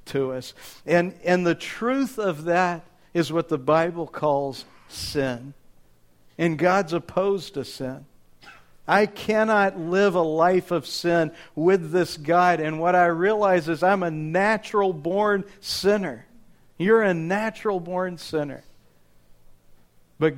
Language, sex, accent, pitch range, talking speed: English, male, American, 135-180 Hz, 135 wpm